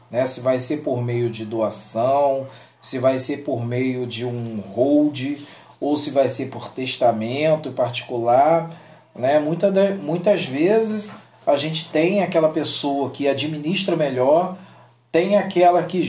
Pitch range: 120-170 Hz